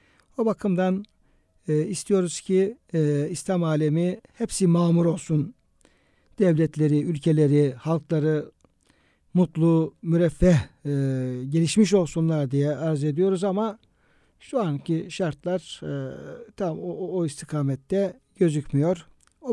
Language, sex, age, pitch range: Turkish, male, 60-79, 155-200 Hz